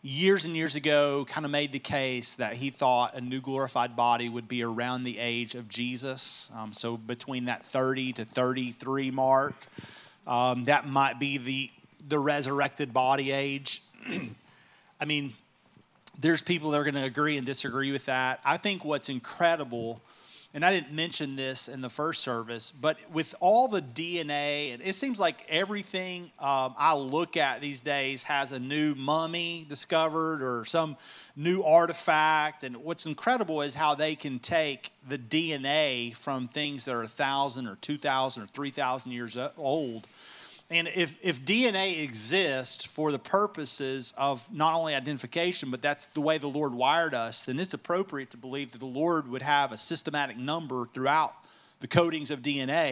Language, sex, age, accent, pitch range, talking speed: English, male, 30-49, American, 130-160 Hz, 170 wpm